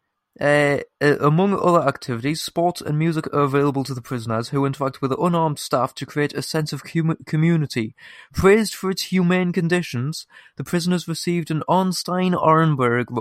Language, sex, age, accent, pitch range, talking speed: English, male, 20-39, British, 125-165 Hz, 165 wpm